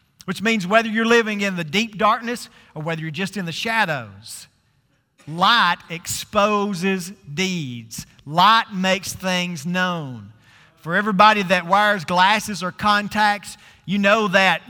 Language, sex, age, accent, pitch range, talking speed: English, male, 40-59, American, 165-210 Hz, 135 wpm